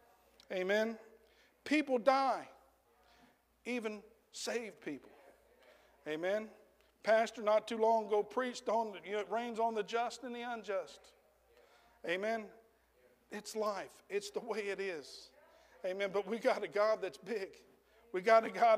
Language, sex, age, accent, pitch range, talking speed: English, male, 50-69, American, 200-240 Hz, 135 wpm